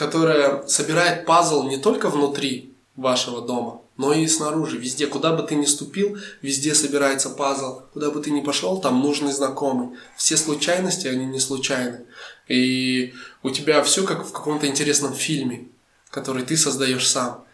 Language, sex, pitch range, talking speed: English, male, 135-155 Hz, 155 wpm